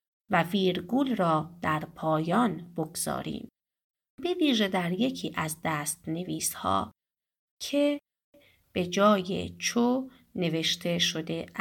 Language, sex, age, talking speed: Persian, female, 30-49, 95 wpm